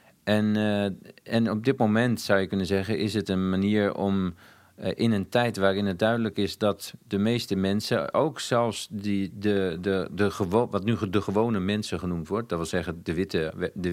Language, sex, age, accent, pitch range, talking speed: Dutch, male, 50-69, Dutch, 100-120 Hz, 195 wpm